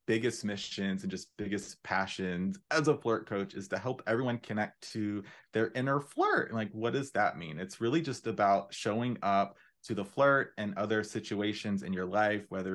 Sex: male